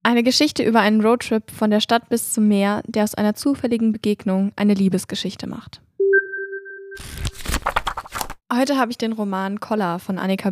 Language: German